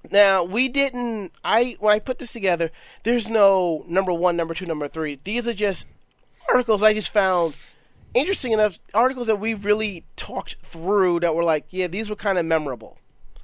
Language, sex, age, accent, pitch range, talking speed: English, male, 30-49, American, 155-225 Hz, 185 wpm